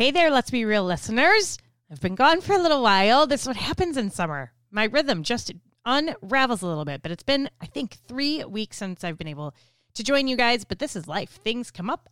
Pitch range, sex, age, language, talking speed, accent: 155-250 Hz, female, 30-49, English, 240 wpm, American